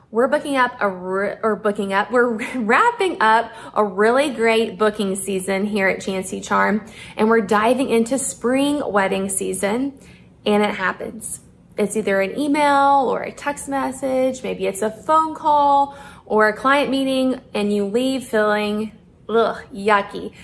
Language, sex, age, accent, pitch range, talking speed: English, female, 20-39, American, 200-255 Hz, 155 wpm